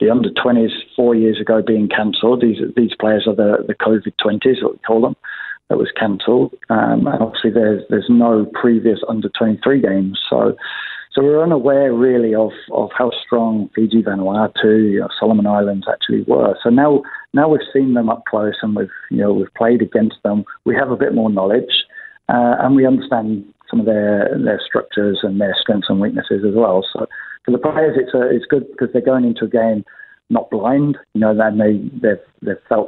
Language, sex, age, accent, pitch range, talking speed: English, male, 40-59, British, 105-125 Hz, 195 wpm